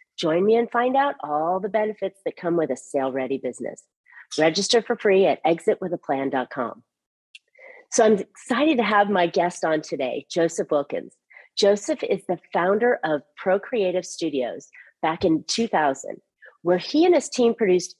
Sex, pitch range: female, 165-250 Hz